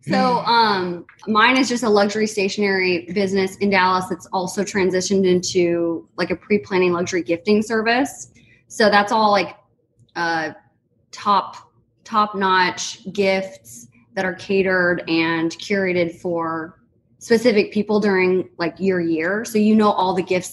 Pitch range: 175-210 Hz